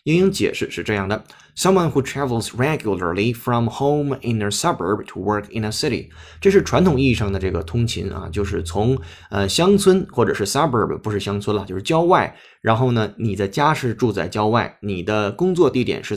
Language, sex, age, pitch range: Chinese, male, 20-39, 100-135 Hz